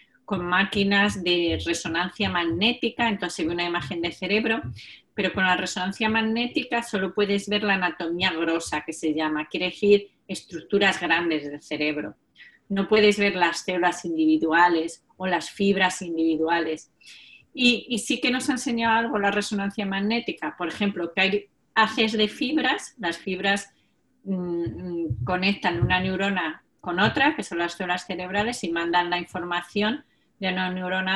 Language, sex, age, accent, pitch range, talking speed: Spanish, female, 30-49, Spanish, 175-215 Hz, 150 wpm